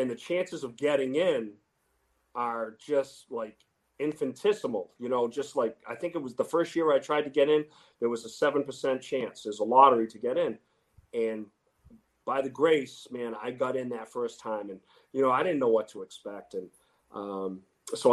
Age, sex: 40-59, male